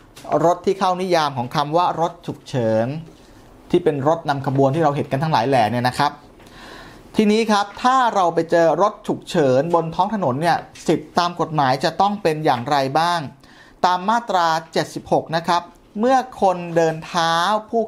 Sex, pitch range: male, 150-200 Hz